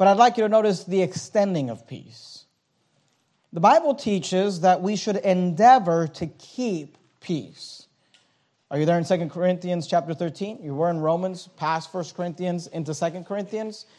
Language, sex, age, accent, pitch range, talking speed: English, male, 40-59, American, 155-210 Hz, 165 wpm